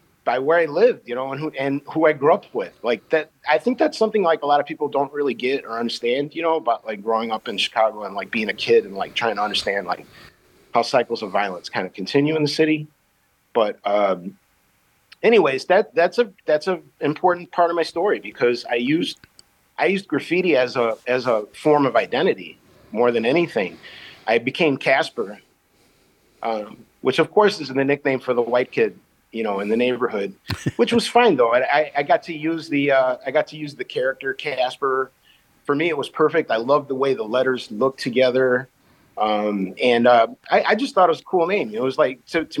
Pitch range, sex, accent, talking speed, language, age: 125-165 Hz, male, American, 220 wpm, English, 40-59